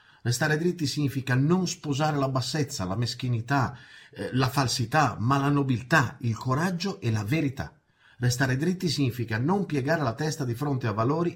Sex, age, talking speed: male, 50-69, 160 wpm